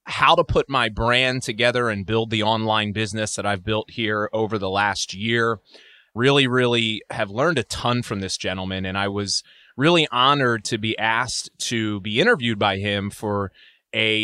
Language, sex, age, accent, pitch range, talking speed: English, male, 20-39, American, 105-130 Hz, 180 wpm